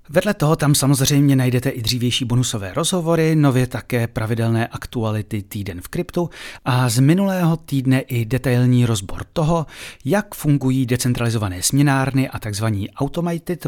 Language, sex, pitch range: Czech, male, 105-140 Hz